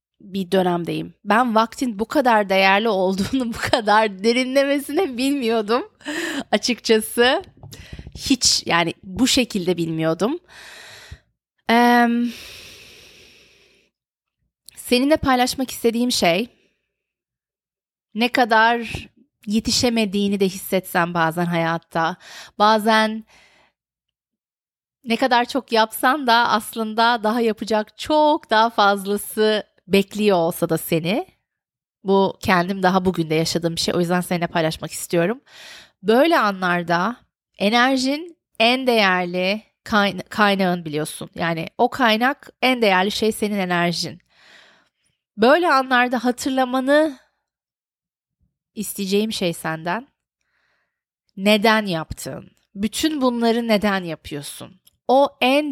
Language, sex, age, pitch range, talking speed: Turkish, female, 30-49, 185-245 Hz, 95 wpm